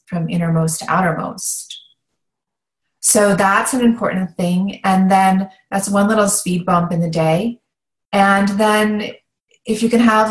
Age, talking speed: 30-49, 145 wpm